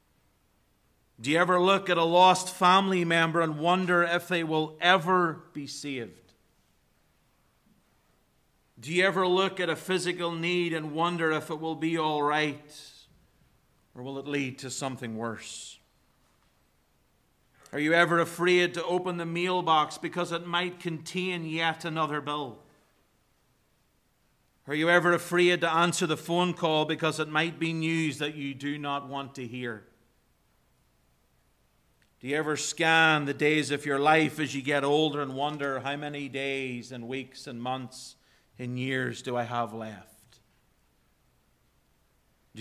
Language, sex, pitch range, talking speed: English, male, 130-165 Hz, 150 wpm